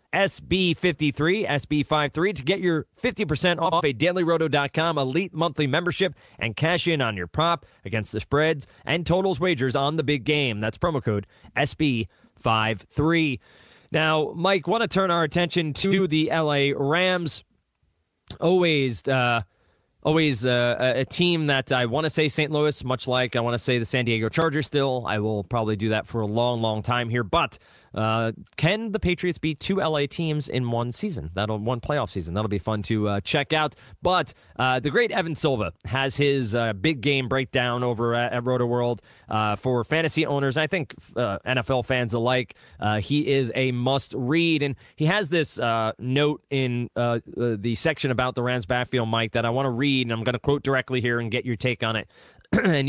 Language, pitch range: English, 120-155 Hz